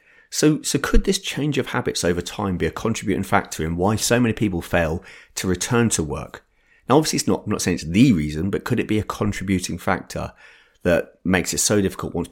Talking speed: 225 wpm